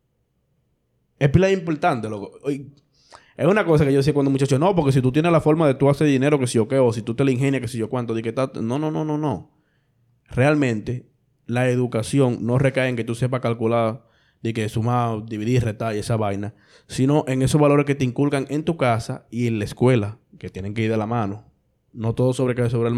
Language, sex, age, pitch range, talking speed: English, male, 20-39, 110-140 Hz, 230 wpm